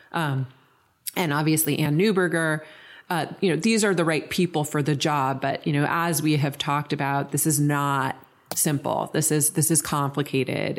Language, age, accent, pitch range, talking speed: English, 30-49, American, 135-155 Hz, 185 wpm